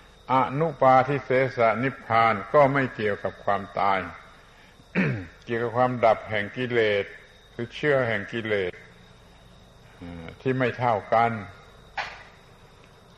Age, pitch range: 70-89, 105-130 Hz